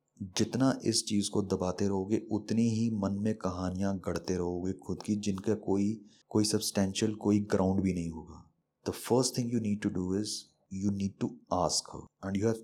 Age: 30-49